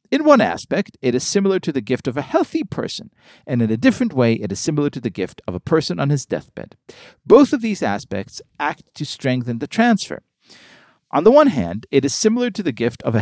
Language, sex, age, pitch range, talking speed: English, male, 50-69, 110-180 Hz, 230 wpm